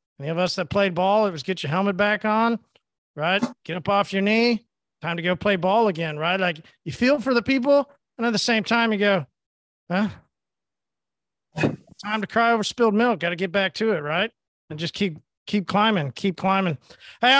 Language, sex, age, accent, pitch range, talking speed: English, male, 40-59, American, 200-250 Hz, 210 wpm